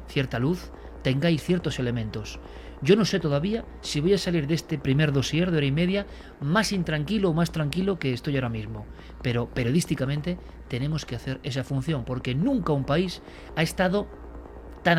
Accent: Spanish